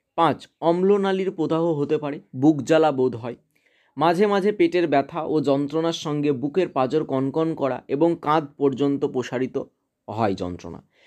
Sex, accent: male, native